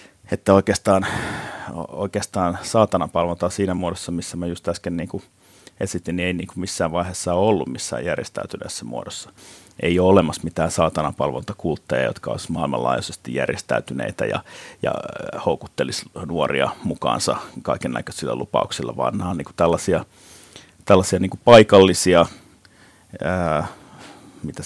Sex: male